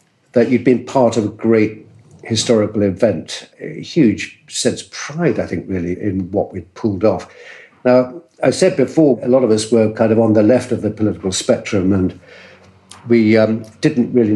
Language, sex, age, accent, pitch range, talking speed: English, male, 50-69, British, 95-115 Hz, 190 wpm